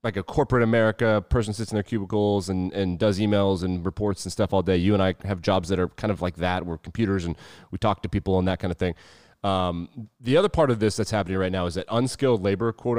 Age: 30-49